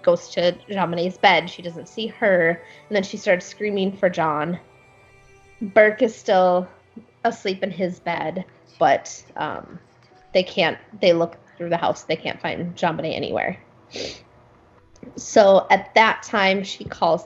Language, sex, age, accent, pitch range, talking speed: English, female, 20-39, American, 170-210 Hz, 145 wpm